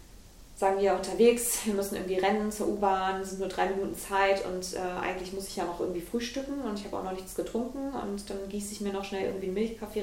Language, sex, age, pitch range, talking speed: German, female, 20-39, 185-205 Hz, 240 wpm